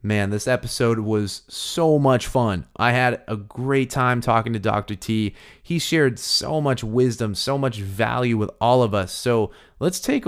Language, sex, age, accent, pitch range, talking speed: English, male, 30-49, American, 105-130 Hz, 180 wpm